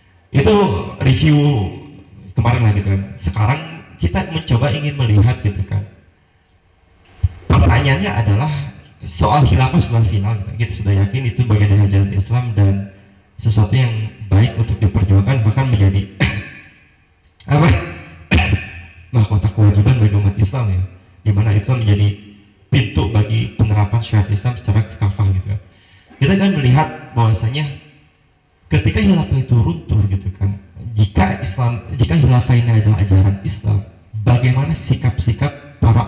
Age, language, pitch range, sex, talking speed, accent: 30-49, Indonesian, 95-120 Hz, male, 125 wpm, native